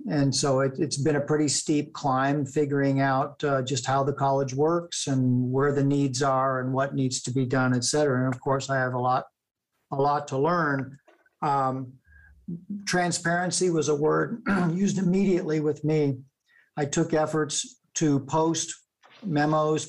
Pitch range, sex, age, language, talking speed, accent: 135-150 Hz, male, 50-69, English, 165 wpm, American